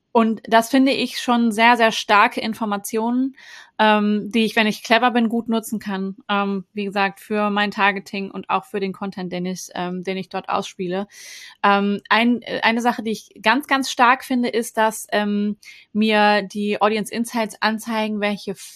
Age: 20-39